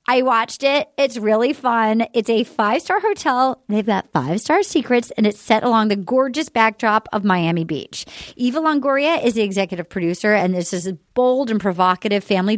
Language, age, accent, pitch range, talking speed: English, 30-49, American, 205-280 Hz, 180 wpm